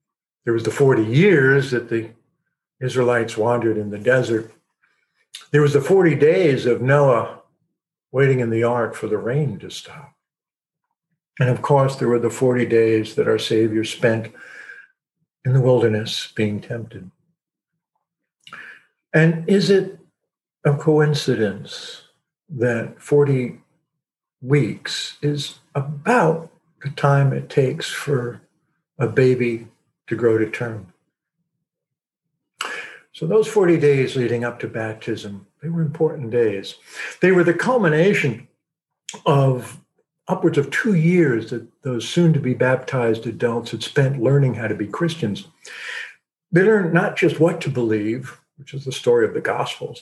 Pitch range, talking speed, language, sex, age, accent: 120-160 Hz, 140 wpm, English, male, 60-79, American